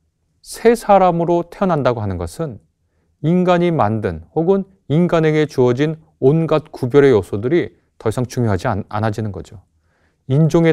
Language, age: Korean, 30-49